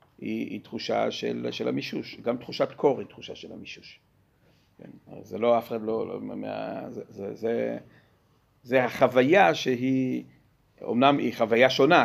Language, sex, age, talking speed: Hebrew, male, 50-69, 160 wpm